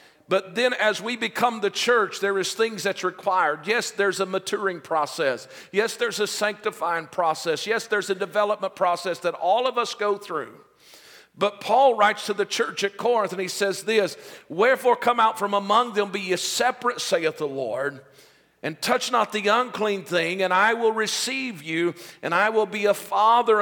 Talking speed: 190 wpm